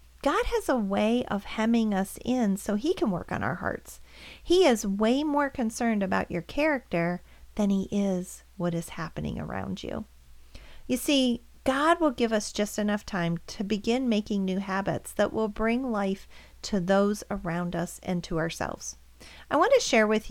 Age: 40-59